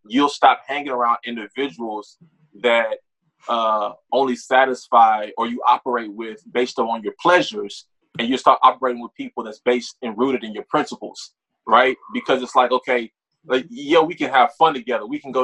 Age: 20-39